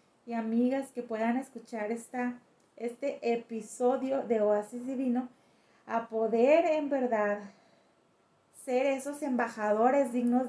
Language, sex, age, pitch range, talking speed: Spanish, female, 30-49, 225-260 Hz, 110 wpm